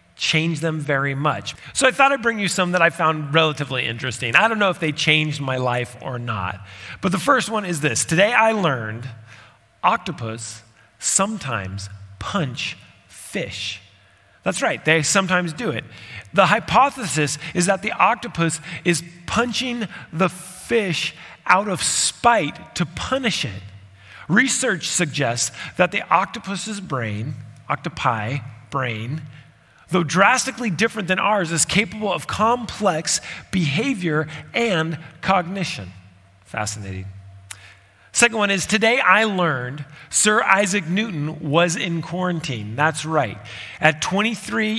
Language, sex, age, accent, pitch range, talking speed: English, male, 40-59, American, 130-195 Hz, 130 wpm